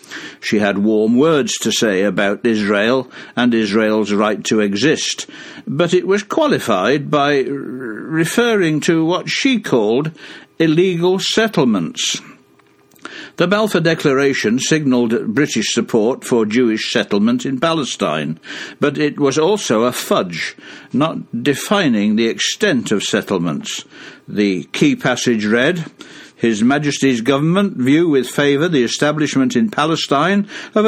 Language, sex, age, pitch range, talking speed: English, male, 60-79, 115-160 Hz, 120 wpm